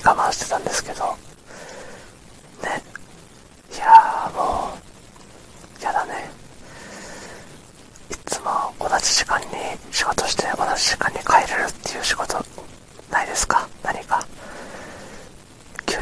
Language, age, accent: Japanese, 40-59, native